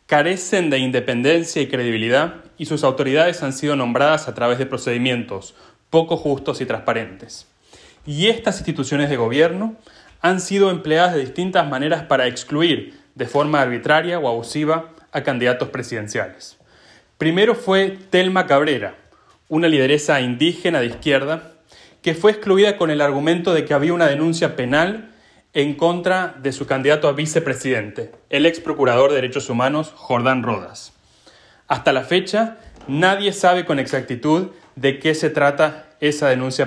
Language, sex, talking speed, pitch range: English, male, 145 wpm, 130-170 Hz